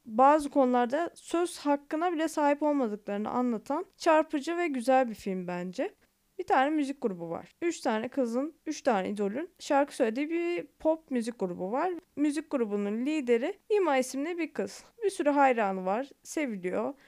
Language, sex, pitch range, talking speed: Turkish, female, 245-335 Hz, 155 wpm